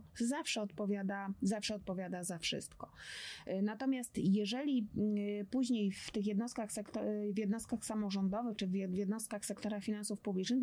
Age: 20-39